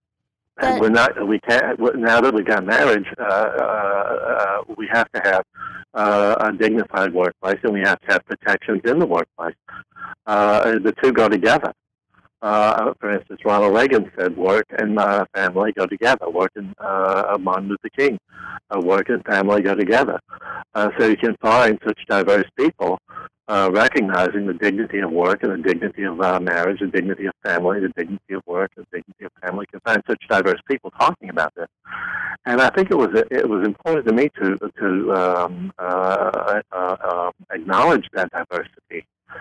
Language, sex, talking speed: English, male, 185 wpm